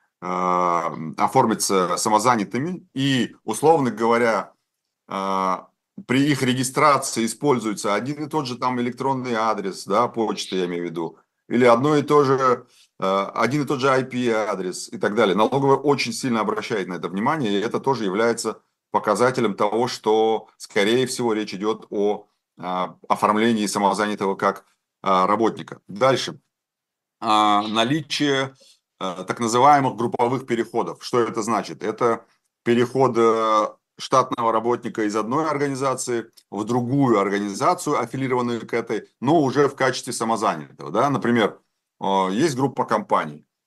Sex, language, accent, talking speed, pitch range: male, Russian, native, 120 wpm, 105-135 Hz